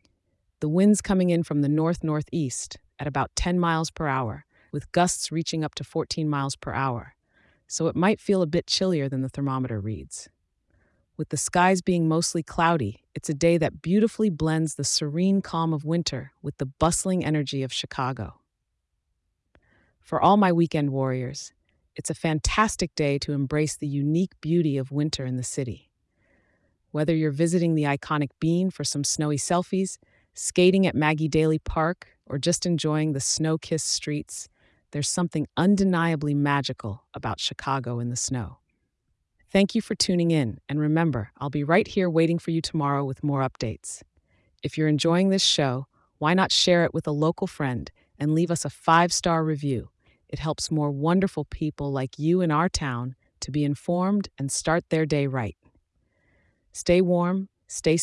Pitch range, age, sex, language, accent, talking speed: 135-170 Hz, 30-49, female, English, American, 170 wpm